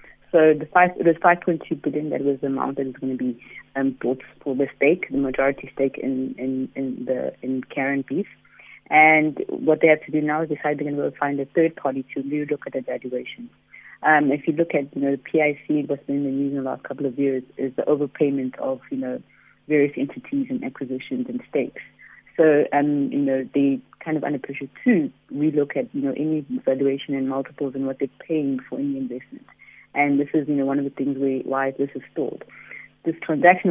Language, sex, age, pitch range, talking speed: English, female, 30-49, 135-155 Hz, 220 wpm